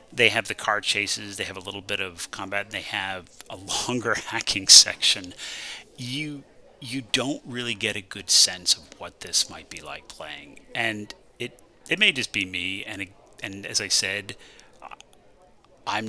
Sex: male